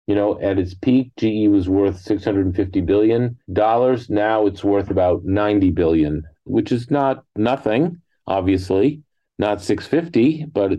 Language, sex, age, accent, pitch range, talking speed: English, male, 40-59, American, 90-105 Hz, 135 wpm